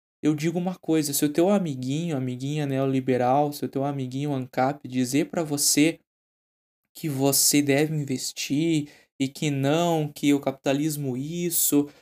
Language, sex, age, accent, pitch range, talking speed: Portuguese, male, 20-39, Brazilian, 140-170 Hz, 145 wpm